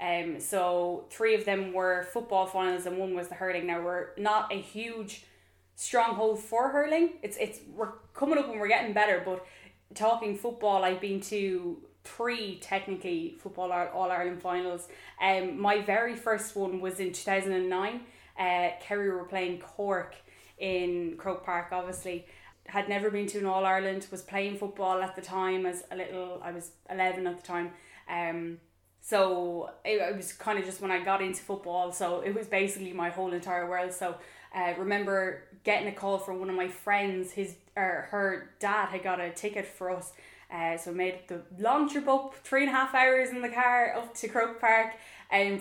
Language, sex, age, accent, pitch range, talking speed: English, female, 10-29, Irish, 180-205 Hz, 190 wpm